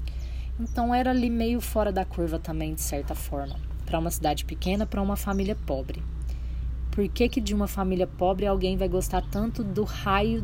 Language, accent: Portuguese, Brazilian